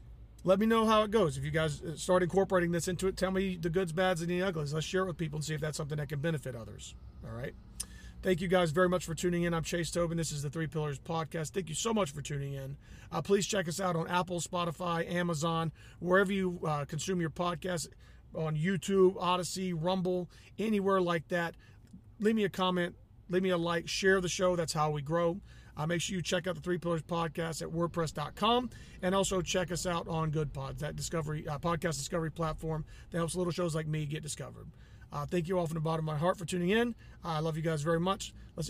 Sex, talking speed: male, 240 wpm